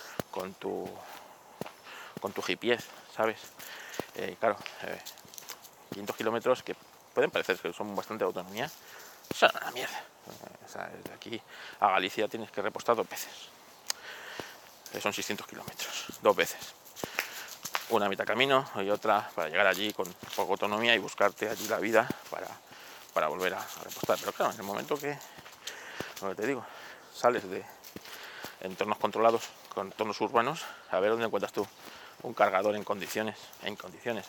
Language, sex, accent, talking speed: Spanish, male, Spanish, 155 wpm